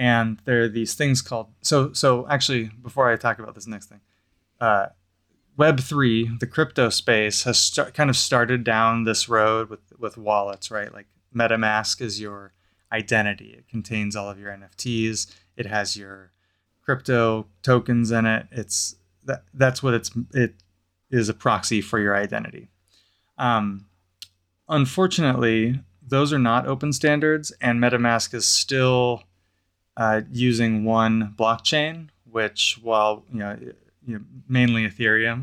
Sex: male